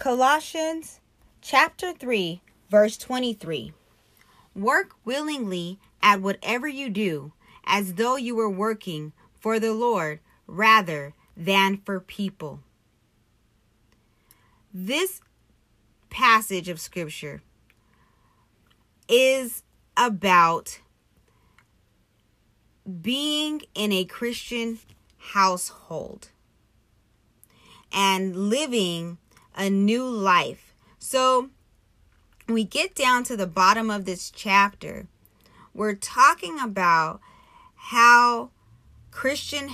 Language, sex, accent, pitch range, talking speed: English, female, American, 165-240 Hz, 80 wpm